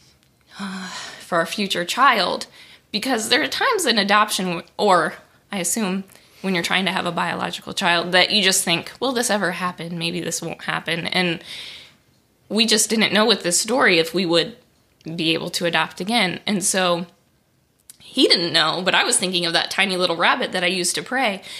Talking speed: 190 wpm